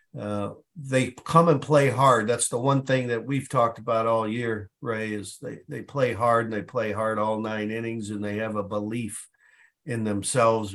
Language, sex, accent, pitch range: English, male, American, 105-125 Hz